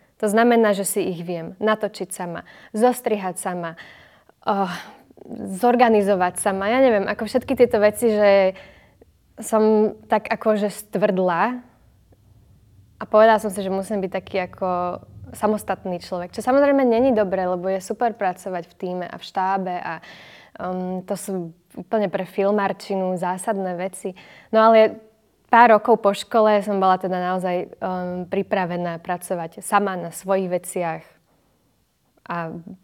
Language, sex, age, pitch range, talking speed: Slovak, female, 10-29, 180-215 Hz, 135 wpm